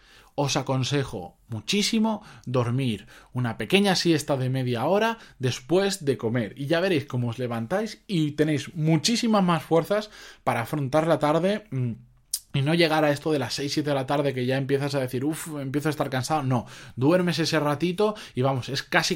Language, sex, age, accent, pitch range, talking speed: Spanish, male, 20-39, Spanish, 130-175 Hz, 180 wpm